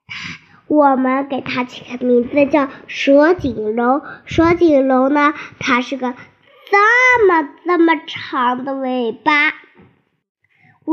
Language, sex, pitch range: Chinese, male, 275-355 Hz